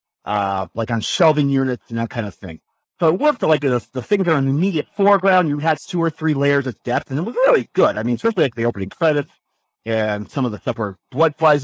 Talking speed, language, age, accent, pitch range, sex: 270 wpm, English, 50-69, American, 120-175 Hz, male